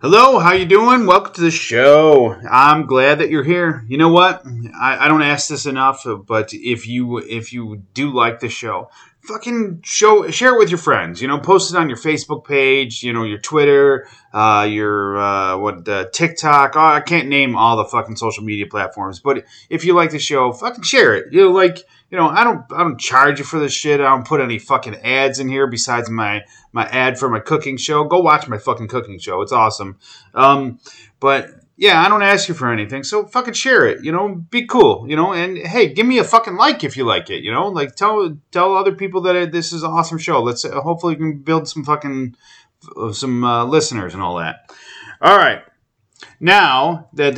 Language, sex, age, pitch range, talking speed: English, male, 30-49, 120-175 Hz, 220 wpm